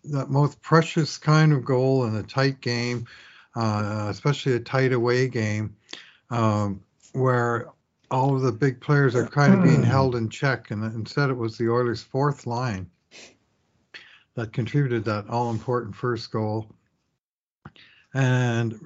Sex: male